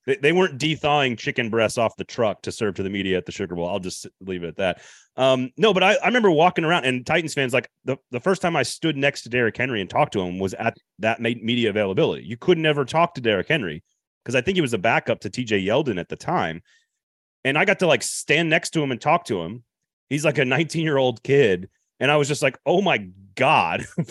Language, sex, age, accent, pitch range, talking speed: English, male, 30-49, American, 110-155 Hz, 245 wpm